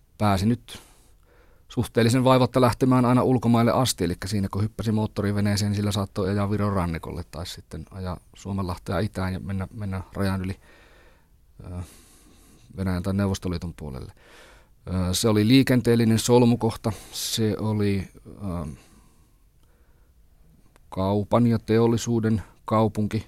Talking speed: 120 wpm